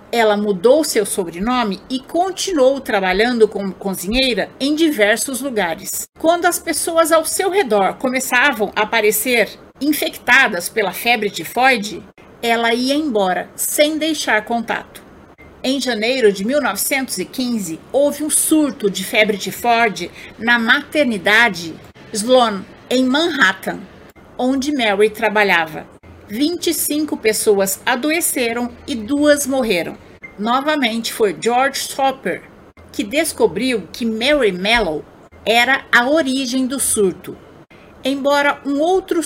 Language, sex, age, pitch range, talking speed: Portuguese, female, 50-69, 215-280 Hz, 115 wpm